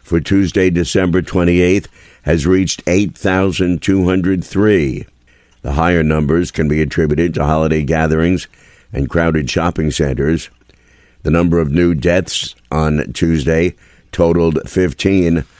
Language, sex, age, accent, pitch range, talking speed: English, male, 50-69, American, 75-90 Hz, 110 wpm